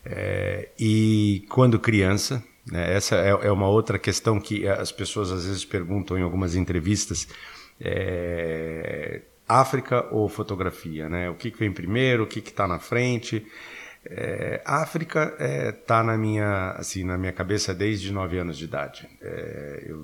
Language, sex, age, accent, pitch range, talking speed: Portuguese, male, 50-69, Brazilian, 90-110 Hz, 155 wpm